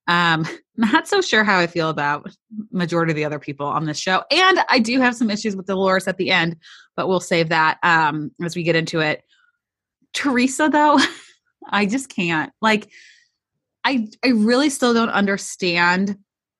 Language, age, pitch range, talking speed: English, 20-39, 170-235 Hz, 175 wpm